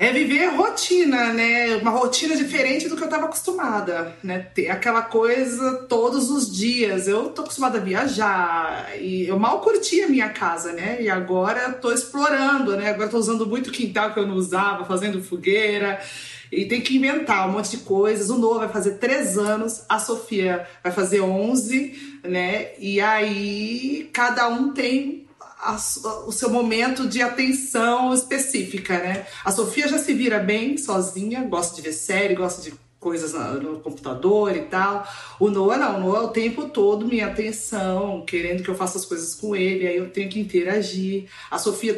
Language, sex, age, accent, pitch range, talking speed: Portuguese, female, 40-59, Brazilian, 195-250 Hz, 175 wpm